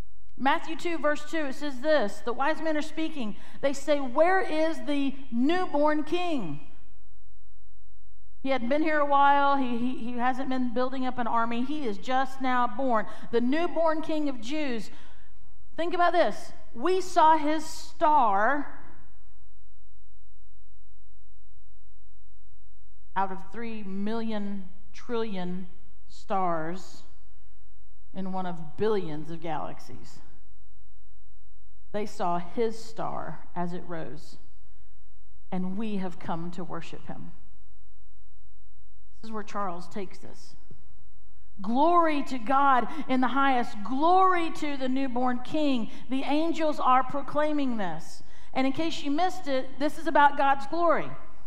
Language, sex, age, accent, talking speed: English, female, 50-69, American, 130 wpm